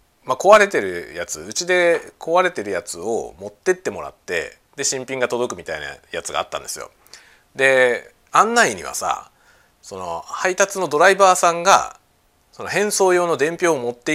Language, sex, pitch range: Japanese, male, 160-250 Hz